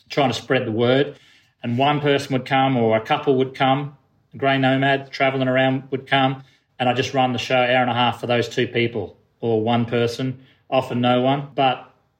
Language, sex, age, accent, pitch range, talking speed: English, male, 30-49, Australian, 115-135 Hz, 215 wpm